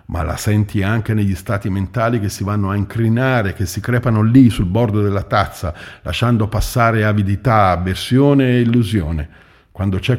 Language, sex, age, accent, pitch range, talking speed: Italian, male, 50-69, native, 85-105 Hz, 165 wpm